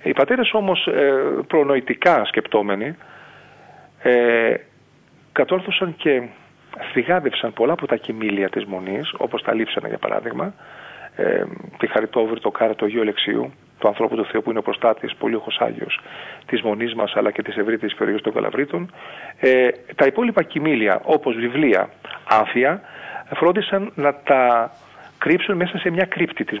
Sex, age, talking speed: male, 40-59, 135 wpm